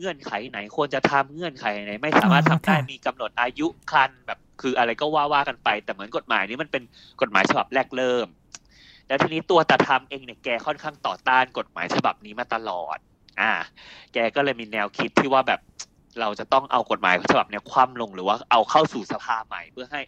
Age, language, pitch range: 20-39, Thai, 115-145 Hz